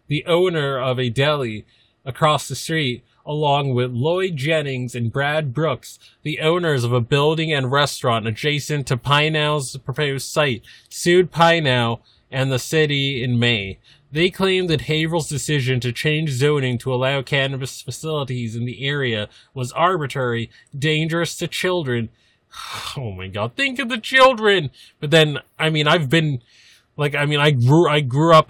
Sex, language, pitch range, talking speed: male, English, 115-150 Hz, 160 wpm